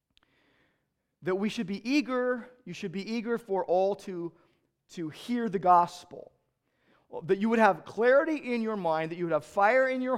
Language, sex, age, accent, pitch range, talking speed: English, male, 40-59, American, 160-235 Hz, 185 wpm